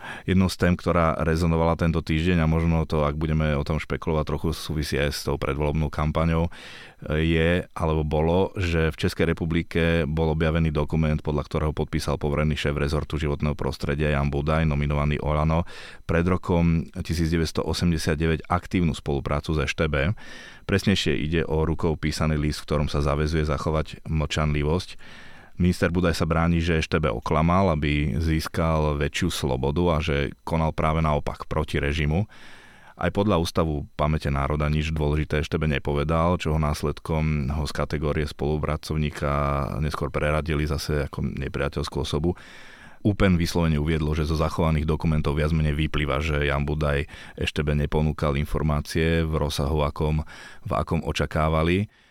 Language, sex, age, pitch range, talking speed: Slovak, male, 30-49, 75-80 Hz, 145 wpm